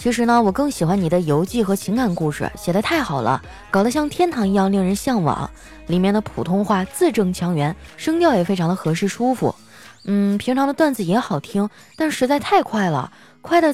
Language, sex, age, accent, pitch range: Chinese, female, 20-39, native, 180-260 Hz